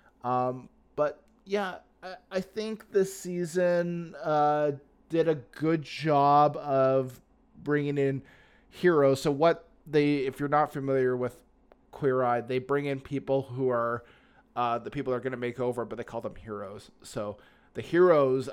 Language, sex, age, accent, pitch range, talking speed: English, male, 20-39, American, 120-145 Hz, 160 wpm